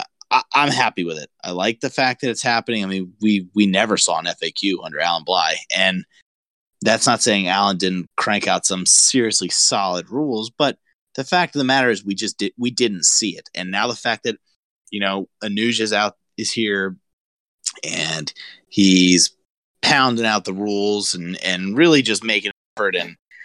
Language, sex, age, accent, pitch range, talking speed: English, male, 30-49, American, 95-120 Hz, 185 wpm